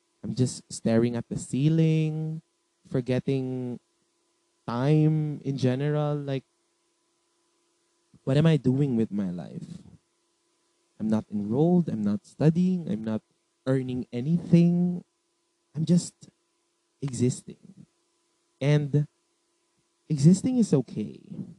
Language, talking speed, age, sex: Filipino, 95 wpm, 20-39, male